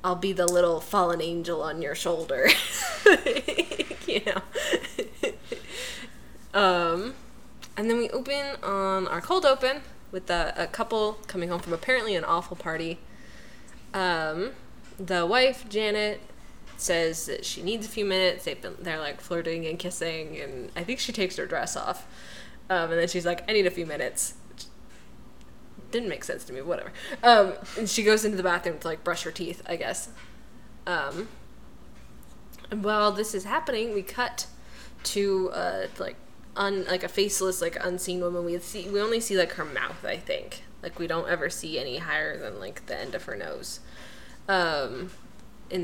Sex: female